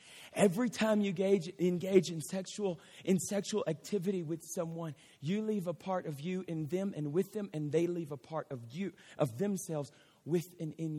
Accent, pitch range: American, 230-325 Hz